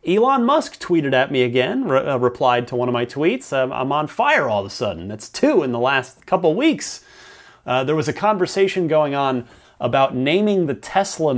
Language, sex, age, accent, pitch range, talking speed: English, male, 30-49, American, 125-170 Hz, 210 wpm